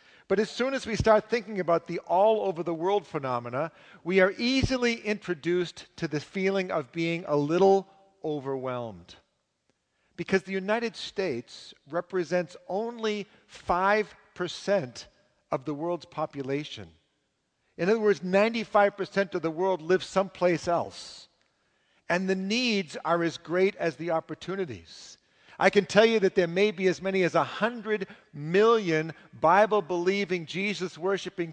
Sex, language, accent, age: male, English, American, 50-69